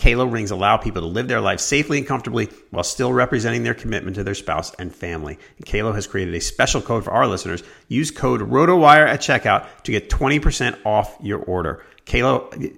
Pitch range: 95-135 Hz